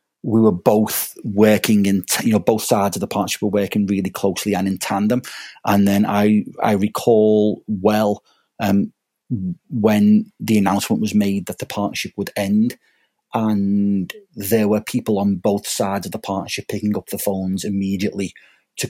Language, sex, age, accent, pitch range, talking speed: English, male, 30-49, British, 100-115 Hz, 170 wpm